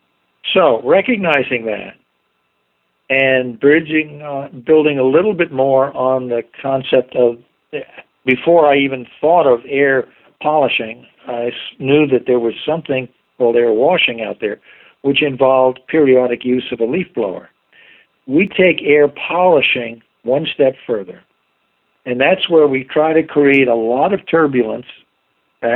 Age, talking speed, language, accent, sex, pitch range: 60-79, 140 wpm, English, American, male, 125-150 Hz